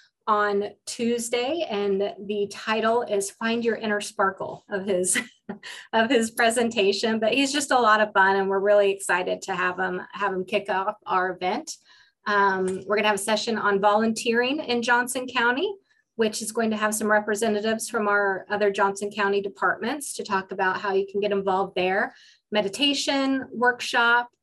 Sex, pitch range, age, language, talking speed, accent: female, 200-230 Hz, 30-49, English, 170 wpm, American